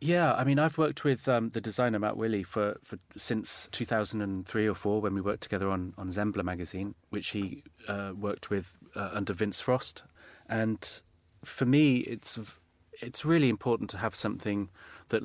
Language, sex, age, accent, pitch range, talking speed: English, male, 30-49, British, 95-105 Hz, 190 wpm